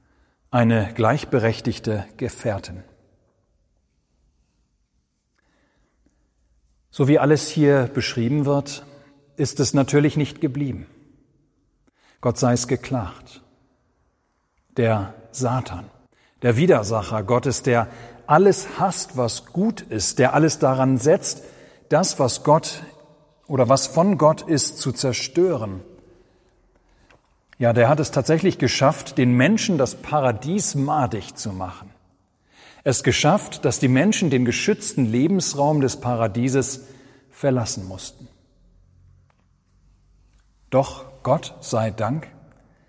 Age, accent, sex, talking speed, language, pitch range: 40-59, German, male, 100 wpm, German, 115-150 Hz